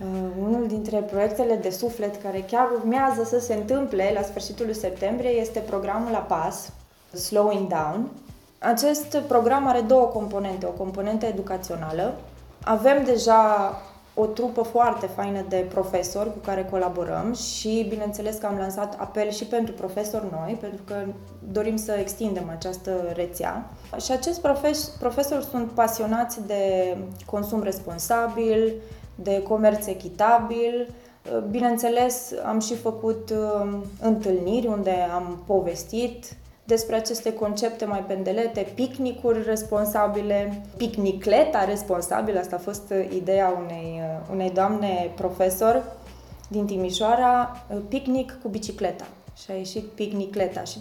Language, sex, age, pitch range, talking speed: Romanian, female, 20-39, 190-230 Hz, 125 wpm